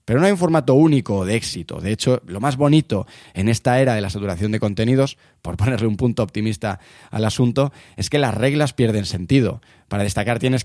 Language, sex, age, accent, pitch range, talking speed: Spanish, male, 20-39, Spanish, 105-145 Hz, 210 wpm